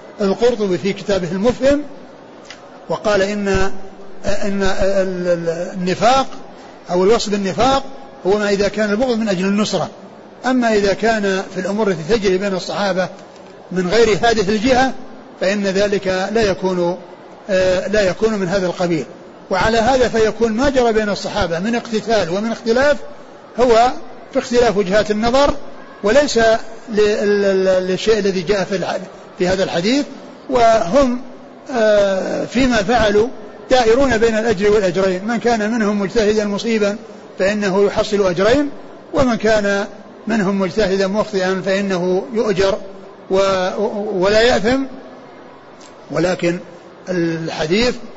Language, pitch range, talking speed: Arabic, 190-225 Hz, 115 wpm